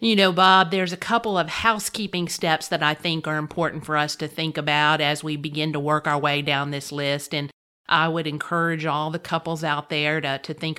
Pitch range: 155-195 Hz